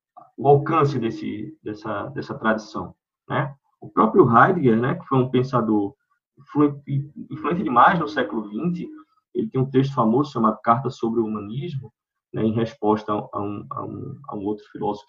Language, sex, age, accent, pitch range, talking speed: Portuguese, male, 20-39, Brazilian, 110-150 Hz, 165 wpm